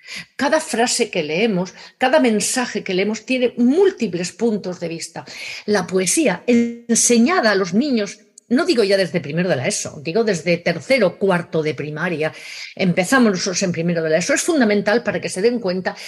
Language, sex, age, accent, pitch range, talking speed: Spanish, female, 40-59, Spanish, 175-245 Hz, 180 wpm